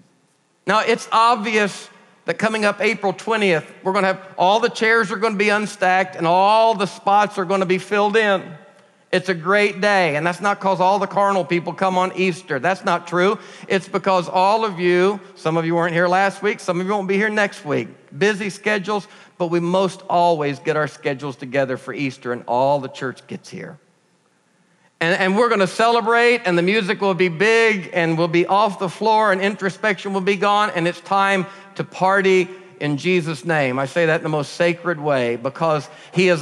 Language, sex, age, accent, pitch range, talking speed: English, male, 50-69, American, 175-205 Hz, 210 wpm